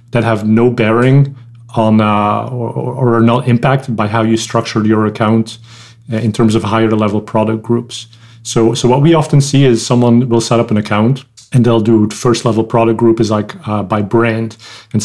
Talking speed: 200 wpm